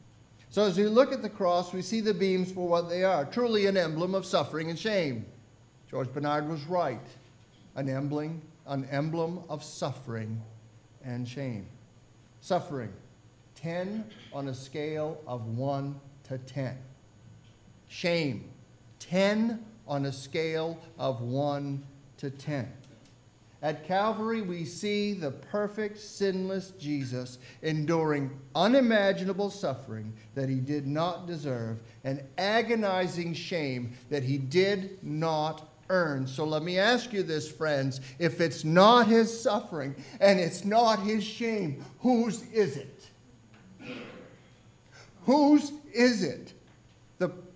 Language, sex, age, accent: English, male, 50-69, American